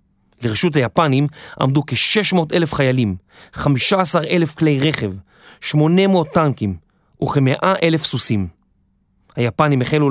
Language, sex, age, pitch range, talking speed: Hebrew, male, 30-49, 120-165 Hz, 85 wpm